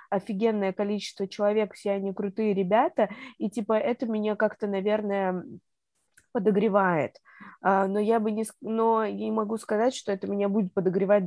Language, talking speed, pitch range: Russian, 140 wpm, 185-220 Hz